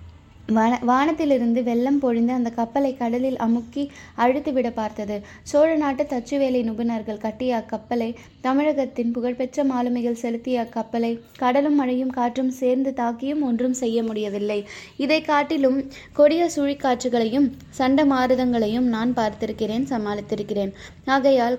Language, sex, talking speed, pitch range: Tamil, female, 105 wpm, 225-265 Hz